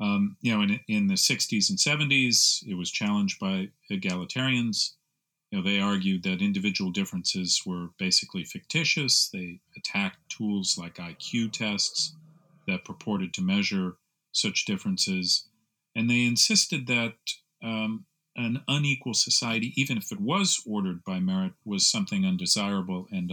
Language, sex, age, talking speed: English, male, 40-59, 140 wpm